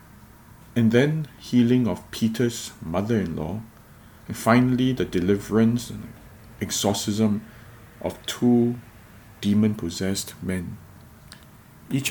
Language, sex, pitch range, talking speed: English, male, 100-115 Hz, 85 wpm